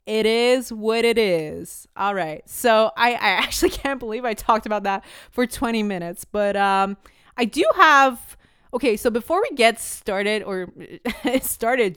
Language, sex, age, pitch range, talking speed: English, female, 20-39, 200-255 Hz, 165 wpm